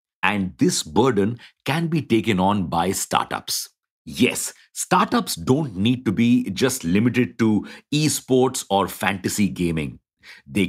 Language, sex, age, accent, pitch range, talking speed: English, male, 50-69, Indian, 105-140 Hz, 130 wpm